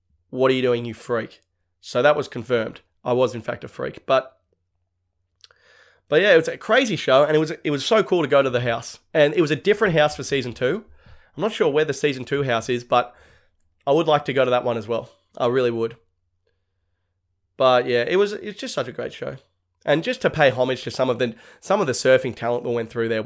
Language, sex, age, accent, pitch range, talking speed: English, male, 20-39, Australian, 115-150 Hz, 250 wpm